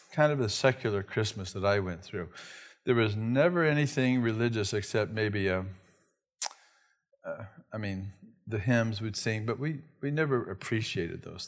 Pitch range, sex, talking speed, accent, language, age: 105-135 Hz, male, 155 wpm, American, English, 50-69